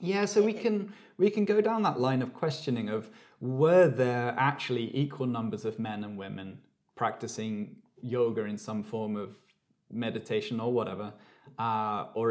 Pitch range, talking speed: 115-145 Hz, 160 wpm